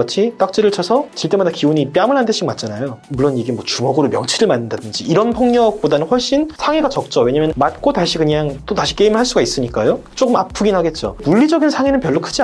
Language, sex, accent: Korean, male, native